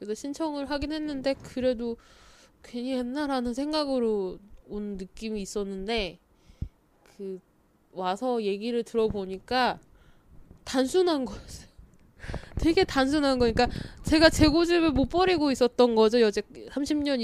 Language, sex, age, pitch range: Korean, female, 10-29, 225-285 Hz